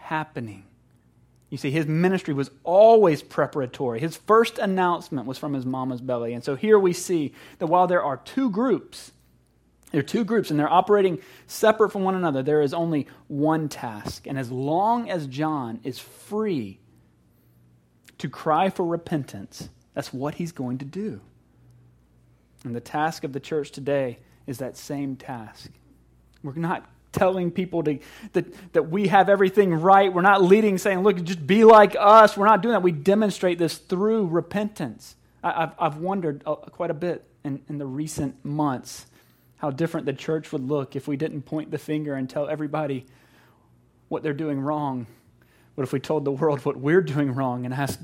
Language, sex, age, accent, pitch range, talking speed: English, male, 30-49, American, 130-180 Hz, 180 wpm